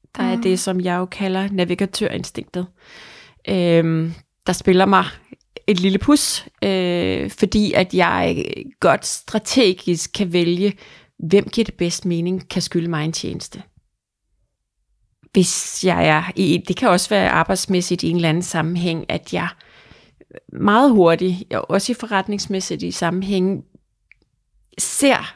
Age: 30-49